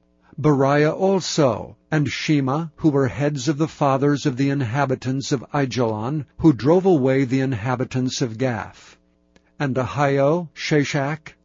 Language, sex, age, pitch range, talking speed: English, male, 60-79, 125-155 Hz, 130 wpm